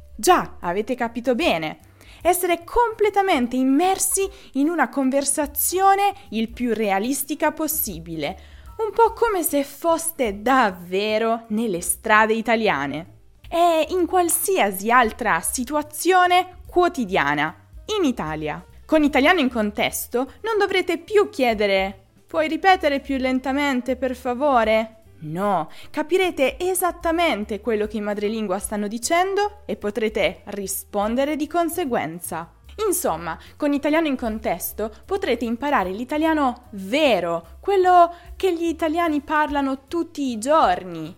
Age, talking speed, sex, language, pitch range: 20-39, 110 wpm, female, Italian, 210-330 Hz